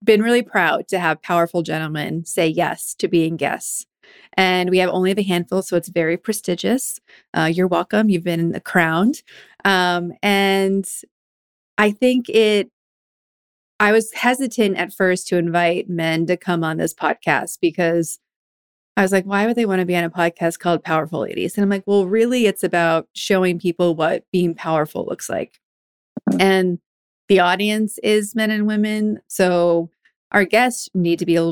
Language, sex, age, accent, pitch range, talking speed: English, female, 30-49, American, 170-205 Hz, 170 wpm